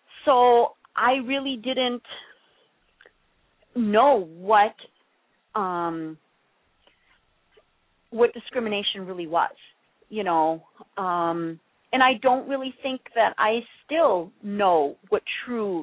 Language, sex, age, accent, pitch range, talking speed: English, female, 40-59, American, 170-220 Hz, 95 wpm